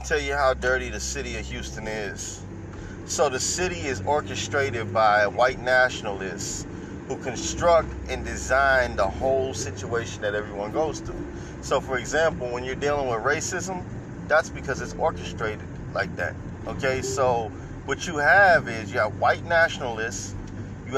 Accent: American